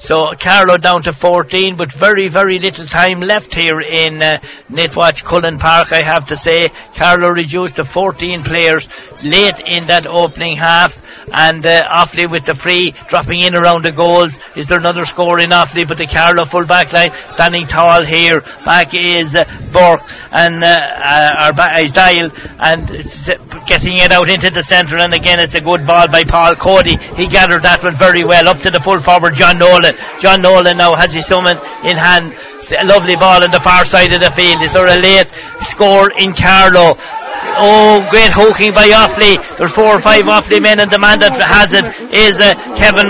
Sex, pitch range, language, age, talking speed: male, 170-195 Hz, English, 60-79, 200 wpm